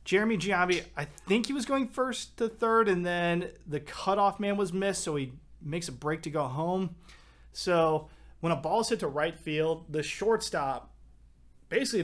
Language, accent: English, American